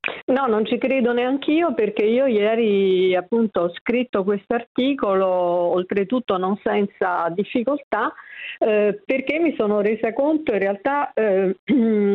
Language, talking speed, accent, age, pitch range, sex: Italian, 135 wpm, native, 50-69, 200-265 Hz, female